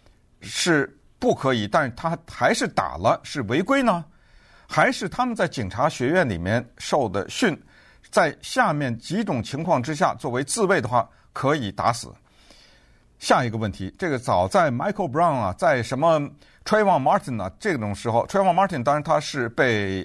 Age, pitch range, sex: 50-69, 115-185 Hz, male